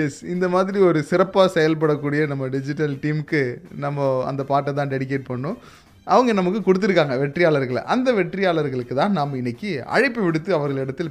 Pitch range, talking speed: 155-215 Hz, 140 wpm